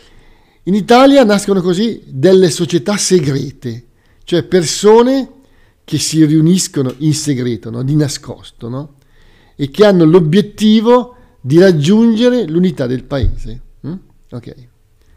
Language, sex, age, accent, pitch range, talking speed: Italian, male, 50-69, native, 120-180 Hz, 115 wpm